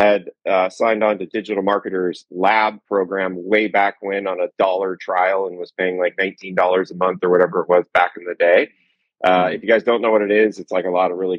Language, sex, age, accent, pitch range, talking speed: English, male, 30-49, American, 95-110 Hz, 240 wpm